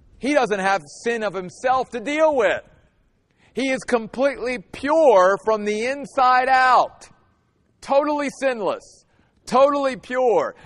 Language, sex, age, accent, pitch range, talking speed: English, male, 50-69, American, 165-235 Hz, 120 wpm